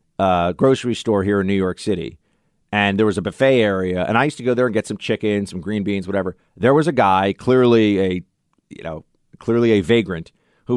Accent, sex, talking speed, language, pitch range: American, male, 225 wpm, English, 100-150 Hz